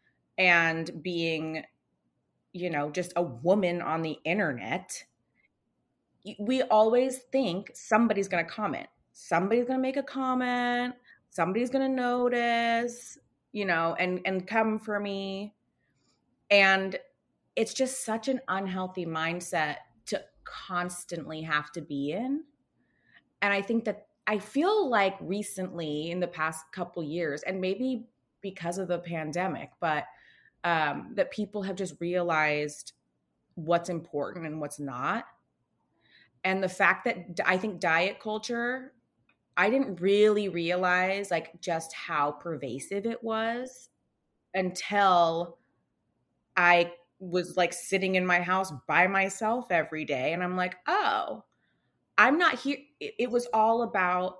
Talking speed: 130 wpm